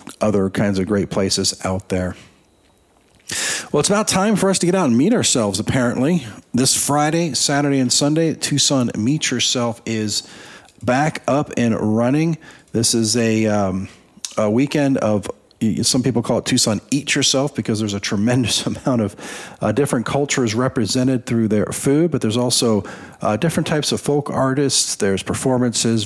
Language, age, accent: English, 40-59, American